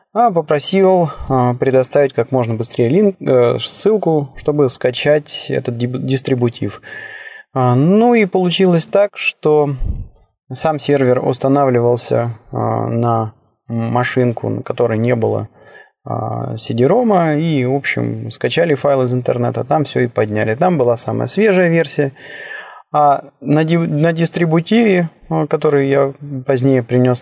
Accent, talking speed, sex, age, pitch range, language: native, 110 wpm, male, 20-39, 115-150 Hz, Russian